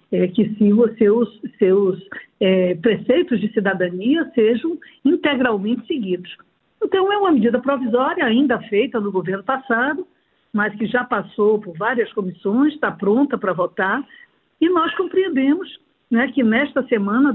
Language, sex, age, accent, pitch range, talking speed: Portuguese, female, 50-69, Brazilian, 215-280 Hz, 140 wpm